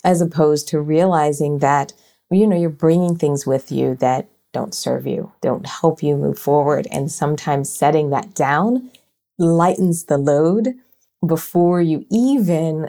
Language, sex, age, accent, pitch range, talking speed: English, female, 30-49, American, 145-180 Hz, 150 wpm